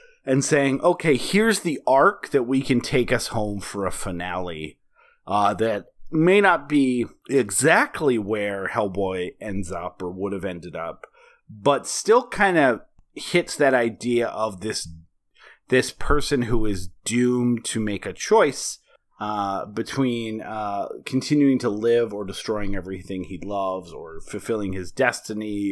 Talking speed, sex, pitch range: 145 wpm, male, 100-135 Hz